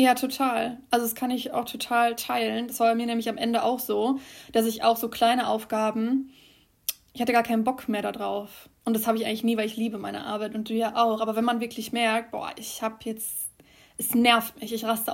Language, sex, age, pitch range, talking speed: German, female, 20-39, 220-240 Hz, 235 wpm